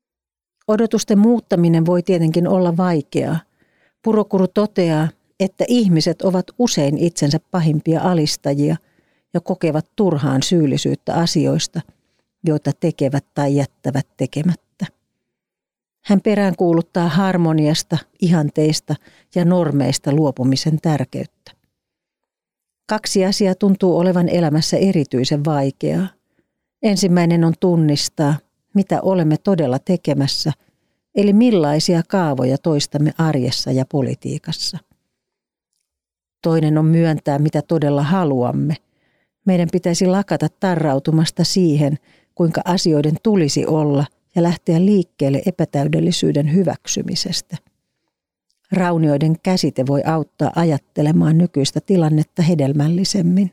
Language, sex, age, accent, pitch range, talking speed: Finnish, female, 40-59, native, 150-185 Hz, 90 wpm